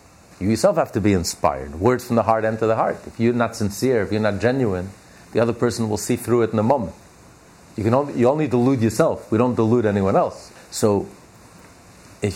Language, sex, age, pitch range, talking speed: English, male, 50-69, 95-125 Hz, 220 wpm